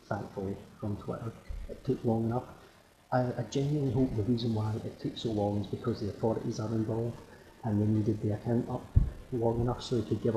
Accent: British